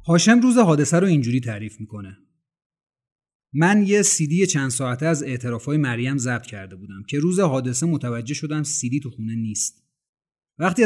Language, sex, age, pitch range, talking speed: Persian, male, 30-49, 125-170 Hz, 155 wpm